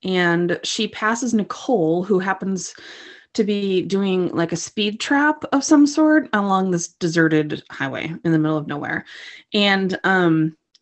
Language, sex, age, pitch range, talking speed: English, female, 20-39, 175-290 Hz, 150 wpm